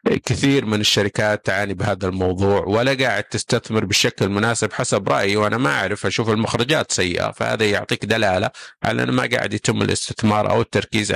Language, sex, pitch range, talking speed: Arabic, male, 95-115 Hz, 160 wpm